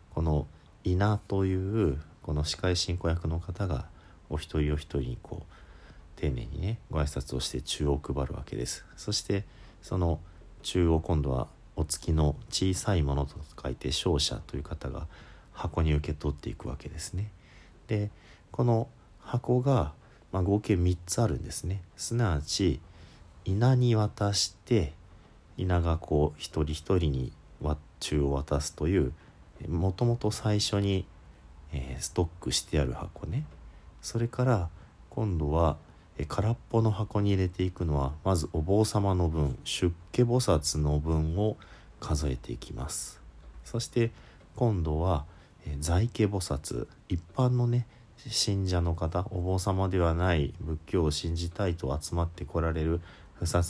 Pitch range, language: 75-100 Hz, Japanese